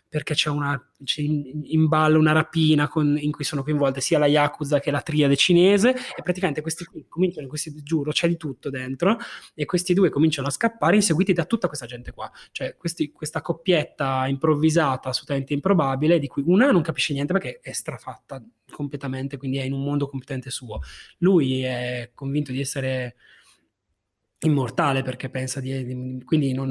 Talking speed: 170 wpm